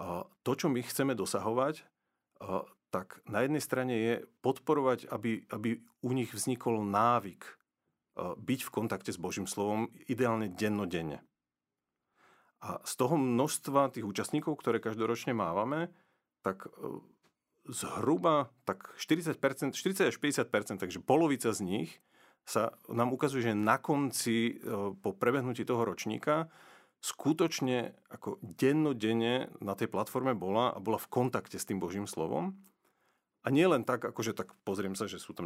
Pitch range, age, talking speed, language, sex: 110-140 Hz, 40-59, 135 wpm, Slovak, male